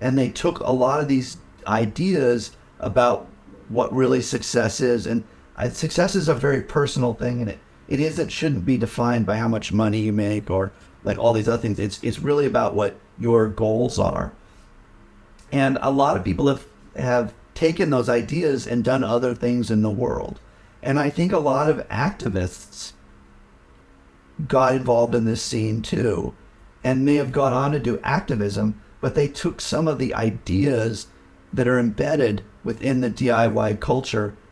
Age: 50-69